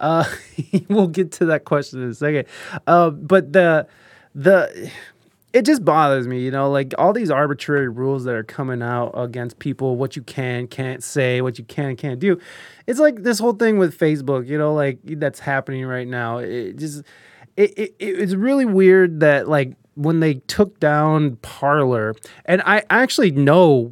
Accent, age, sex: American, 20-39, male